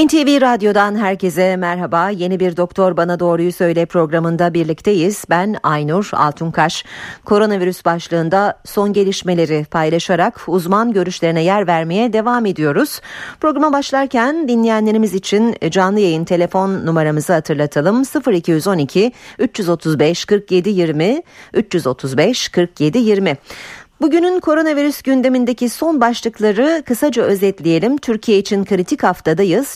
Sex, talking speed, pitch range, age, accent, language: female, 105 wpm, 165-225 Hz, 50-69, native, Turkish